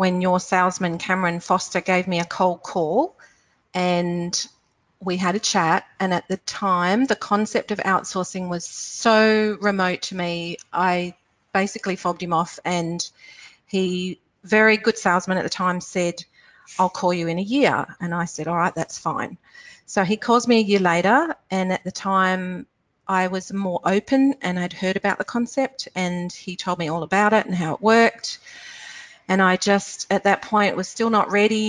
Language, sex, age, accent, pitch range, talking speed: English, female, 40-59, Australian, 175-210 Hz, 185 wpm